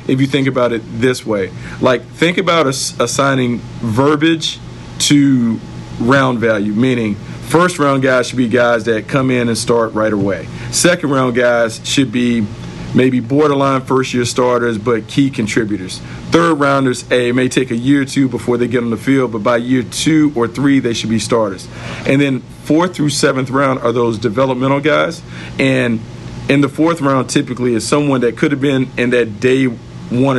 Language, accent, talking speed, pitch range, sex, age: English, American, 185 wpm, 115-140 Hz, male, 50-69